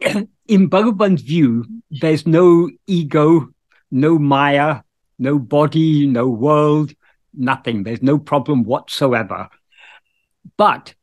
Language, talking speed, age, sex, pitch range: English, 100 wpm, 60-79, male, 140-190 Hz